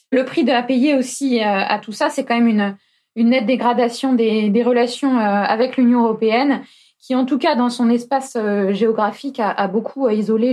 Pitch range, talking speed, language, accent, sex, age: 230-275 Hz, 200 wpm, French, French, female, 20-39